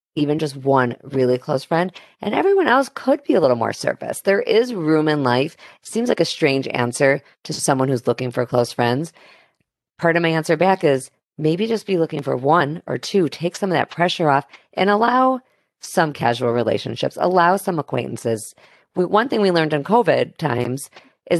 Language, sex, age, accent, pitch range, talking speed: English, female, 40-59, American, 120-165 Hz, 190 wpm